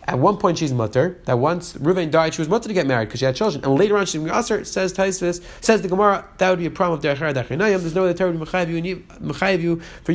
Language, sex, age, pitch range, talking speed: English, male, 30-49, 145-190 Hz, 260 wpm